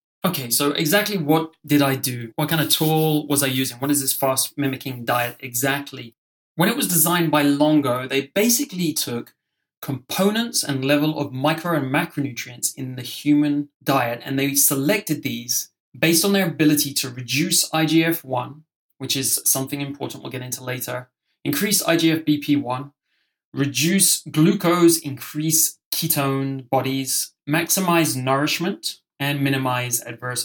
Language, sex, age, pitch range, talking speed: English, male, 20-39, 130-155 Hz, 140 wpm